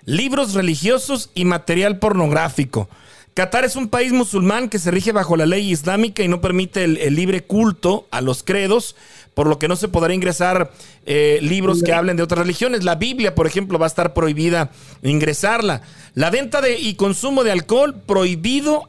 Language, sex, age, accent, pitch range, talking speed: Spanish, male, 40-59, Mexican, 165-220 Hz, 180 wpm